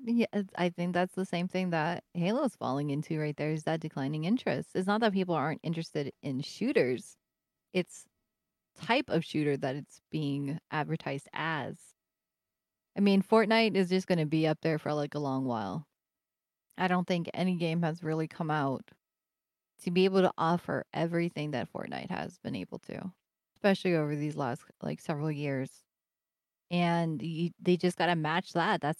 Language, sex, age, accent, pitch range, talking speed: English, female, 20-39, American, 150-180 Hz, 180 wpm